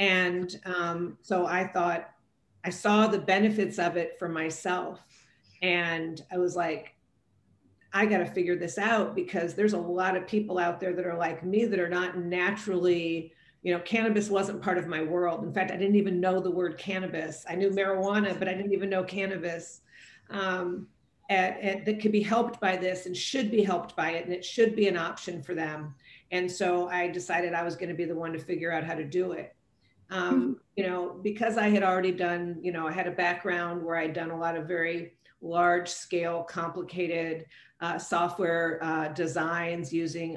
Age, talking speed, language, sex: 40-59, 195 wpm, English, female